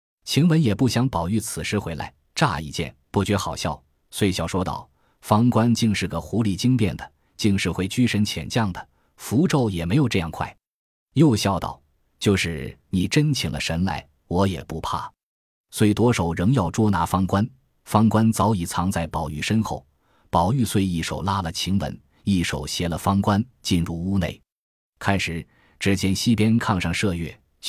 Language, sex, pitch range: Chinese, male, 85-110 Hz